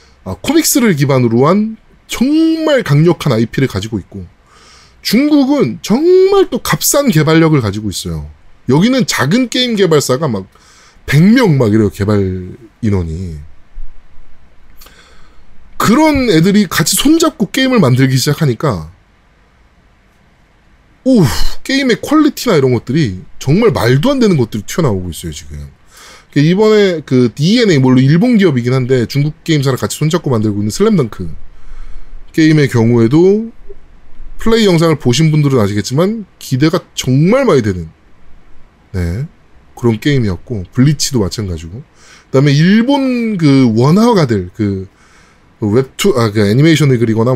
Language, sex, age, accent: Korean, male, 20-39, native